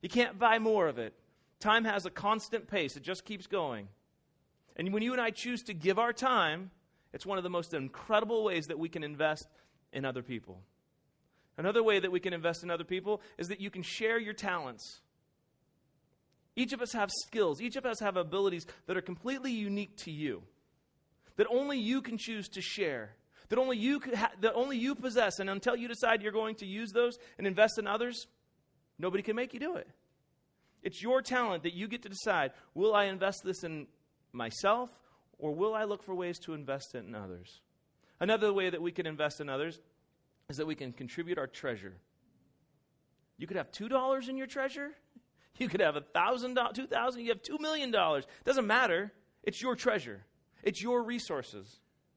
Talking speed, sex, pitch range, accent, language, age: 190 wpm, male, 165-240 Hz, American, English, 30-49